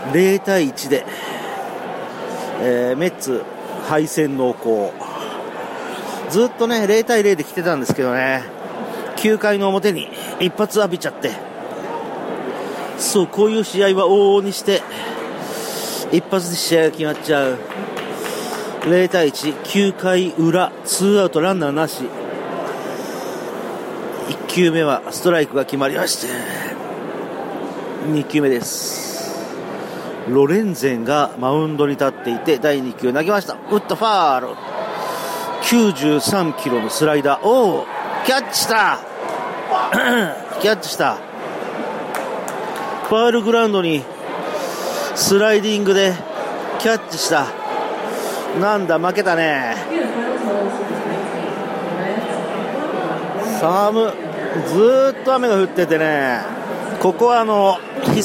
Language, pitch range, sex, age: Japanese, 150-205 Hz, male, 40-59